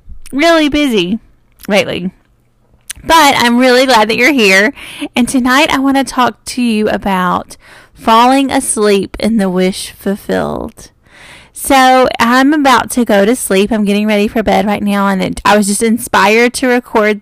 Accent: American